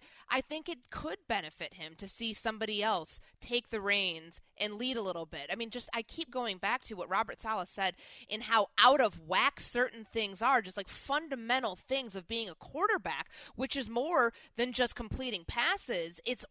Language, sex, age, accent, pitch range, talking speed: English, female, 20-39, American, 185-245 Hz, 195 wpm